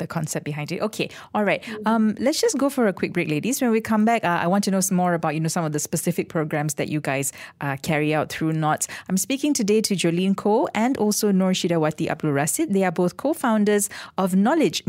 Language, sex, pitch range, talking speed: English, female, 160-210 Hz, 240 wpm